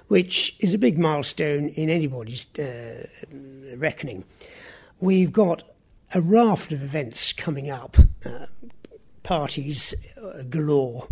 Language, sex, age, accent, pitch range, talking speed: English, male, 60-79, British, 140-175 Hz, 110 wpm